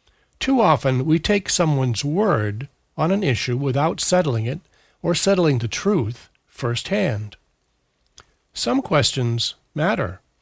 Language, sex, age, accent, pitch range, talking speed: English, male, 60-79, American, 120-180 Hz, 115 wpm